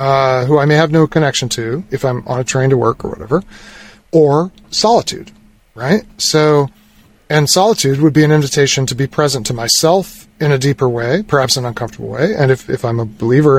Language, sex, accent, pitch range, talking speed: English, male, American, 125-170 Hz, 205 wpm